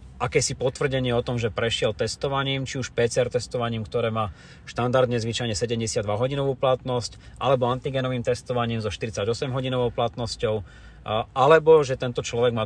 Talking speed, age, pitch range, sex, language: 140 wpm, 30-49, 110-125 Hz, male, Slovak